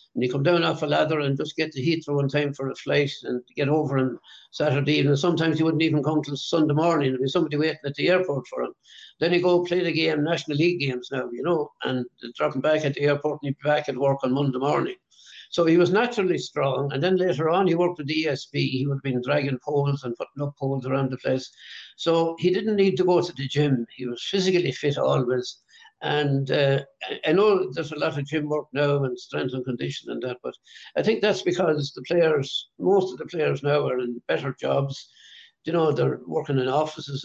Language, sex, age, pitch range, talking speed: English, male, 60-79, 135-165 Hz, 240 wpm